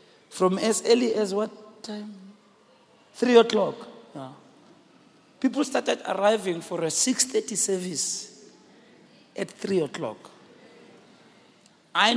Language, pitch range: English, 175-230 Hz